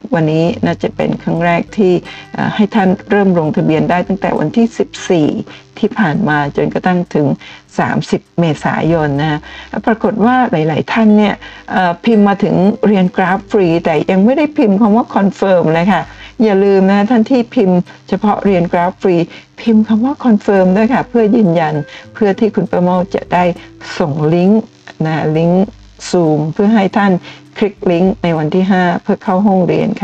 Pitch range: 170-210 Hz